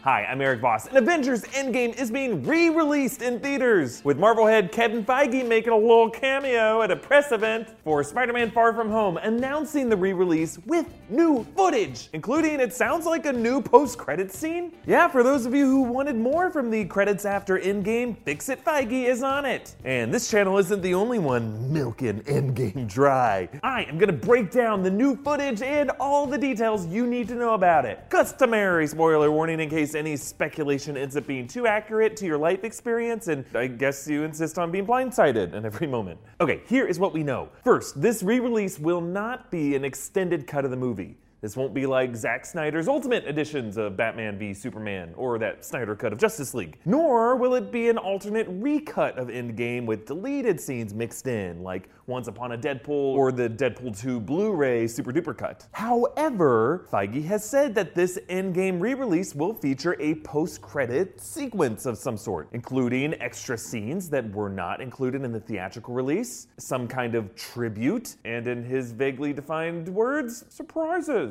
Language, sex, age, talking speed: English, male, 30-49, 185 wpm